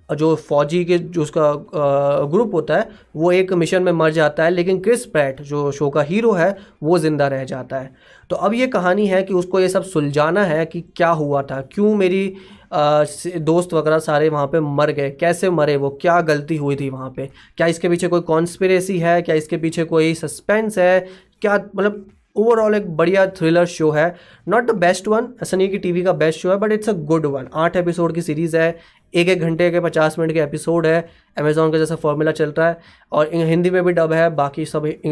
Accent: native